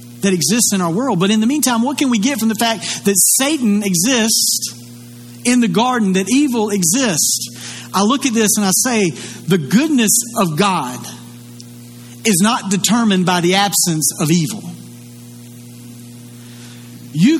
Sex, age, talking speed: male, 40-59, 155 wpm